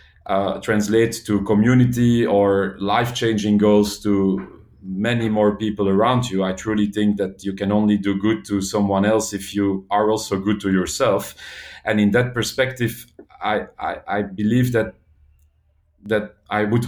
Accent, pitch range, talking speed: French, 100-120 Hz, 155 wpm